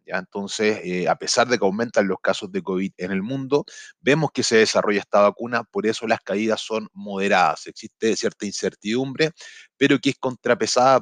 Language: Spanish